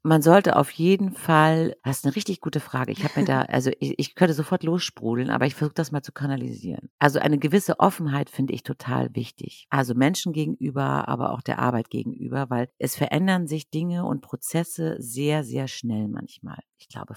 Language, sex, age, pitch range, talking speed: German, female, 50-69, 125-160 Hz, 200 wpm